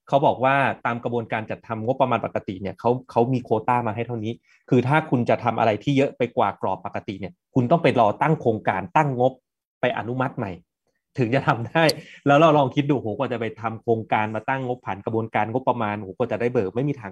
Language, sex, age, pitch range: Thai, male, 20-39, 110-135 Hz